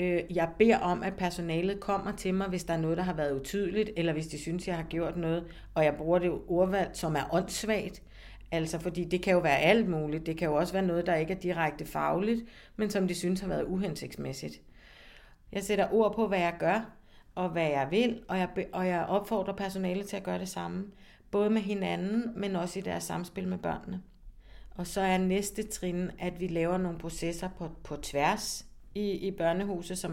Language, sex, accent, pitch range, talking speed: Danish, female, native, 160-195 Hz, 205 wpm